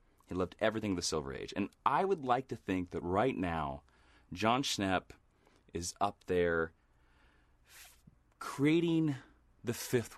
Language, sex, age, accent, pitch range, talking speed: English, male, 30-49, American, 80-110 Hz, 145 wpm